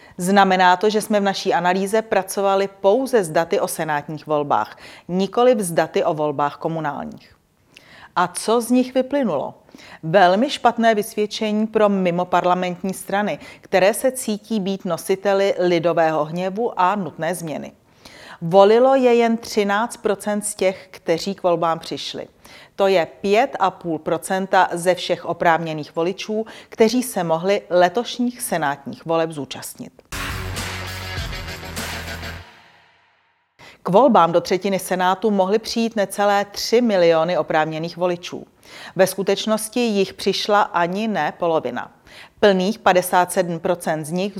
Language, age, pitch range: Czech, 40-59, 170-210 Hz